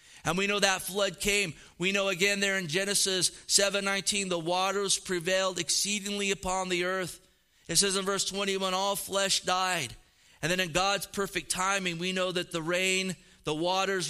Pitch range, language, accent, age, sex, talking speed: 160-185 Hz, English, American, 30-49, male, 180 wpm